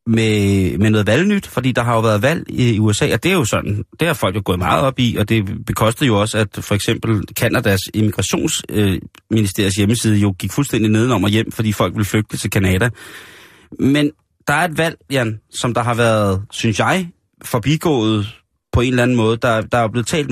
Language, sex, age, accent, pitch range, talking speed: Danish, male, 30-49, native, 105-130 Hz, 205 wpm